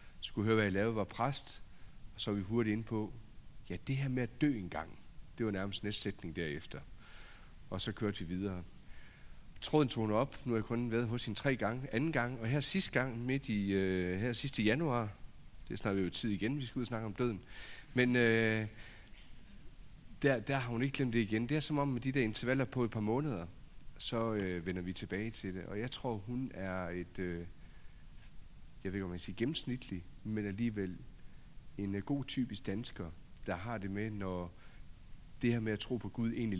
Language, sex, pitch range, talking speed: Danish, male, 100-130 Hz, 220 wpm